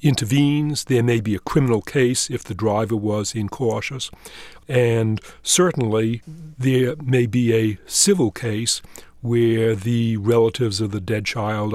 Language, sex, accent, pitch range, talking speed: English, male, American, 110-125 Hz, 140 wpm